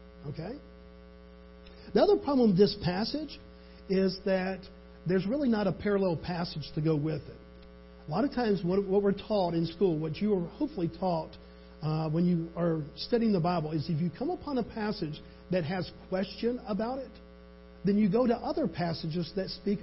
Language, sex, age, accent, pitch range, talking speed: English, male, 50-69, American, 155-205 Hz, 185 wpm